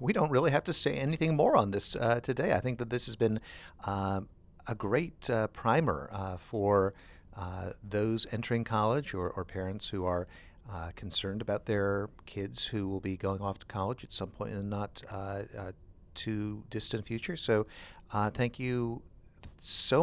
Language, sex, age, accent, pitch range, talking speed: English, male, 50-69, American, 95-120 Hz, 185 wpm